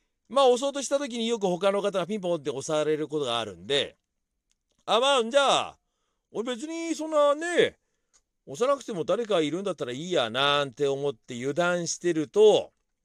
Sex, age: male, 40-59